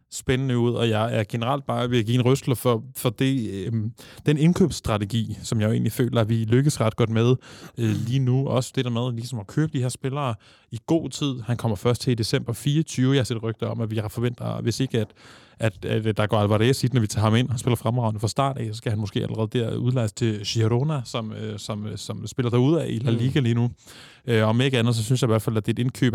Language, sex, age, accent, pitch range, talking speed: Danish, male, 20-39, native, 110-130 Hz, 270 wpm